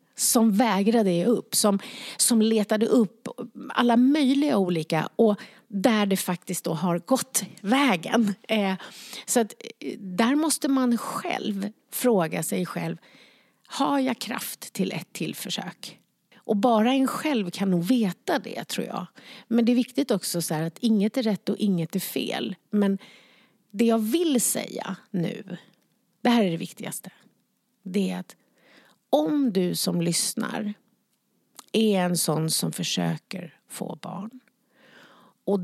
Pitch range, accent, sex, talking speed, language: 185-240 Hz, Swedish, female, 145 wpm, English